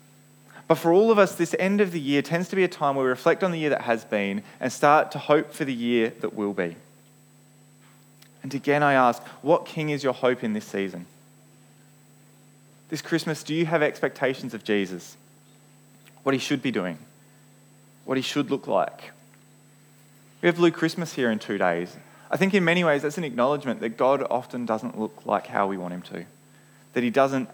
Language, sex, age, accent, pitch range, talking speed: English, male, 20-39, Australian, 115-155 Hz, 205 wpm